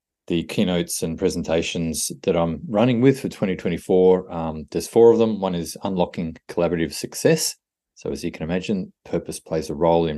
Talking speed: 175 wpm